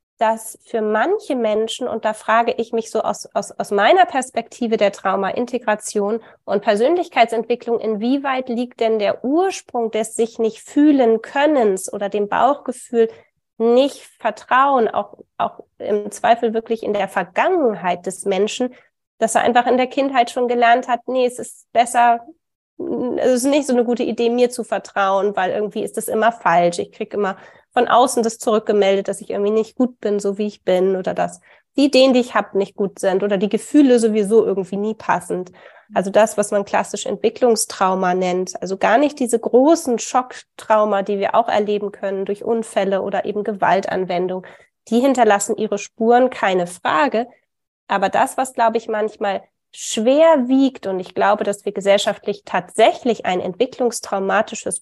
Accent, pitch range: German, 205-245 Hz